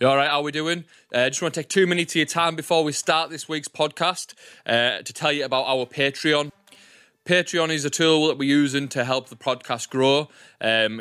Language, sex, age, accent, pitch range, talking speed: English, male, 20-39, British, 115-140 Hz, 225 wpm